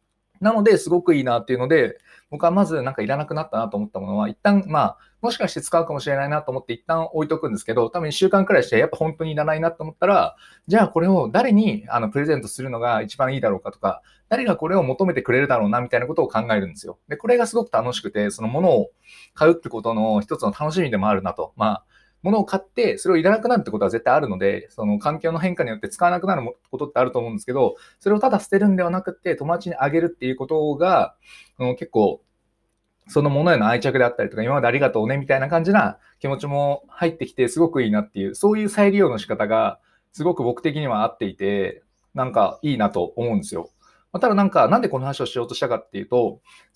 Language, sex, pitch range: Japanese, male, 135-195 Hz